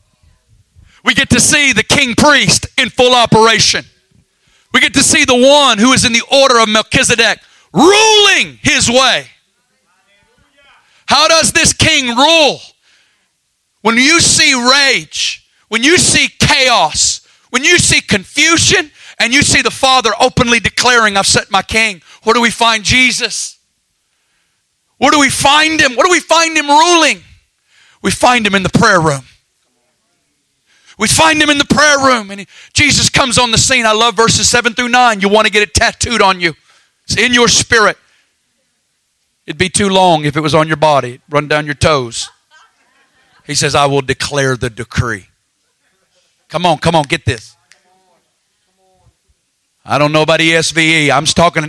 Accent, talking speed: American, 165 wpm